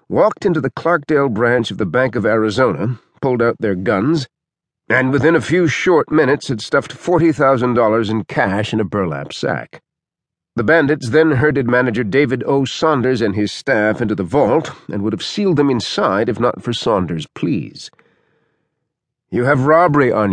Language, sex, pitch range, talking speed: English, male, 110-145 Hz, 170 wpm